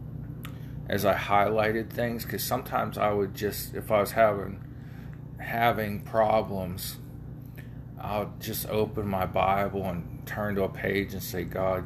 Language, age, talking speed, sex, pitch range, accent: English, 40-59, 140 wpm, male, 100-125 Hz, American